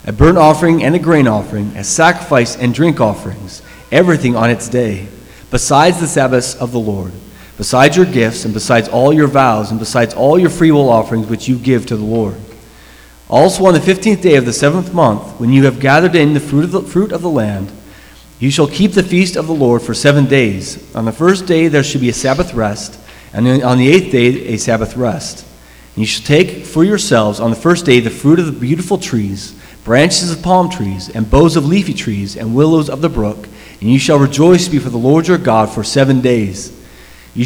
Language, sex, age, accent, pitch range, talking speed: English, male, 30-49, American, 110-155 Hz, 220 wpm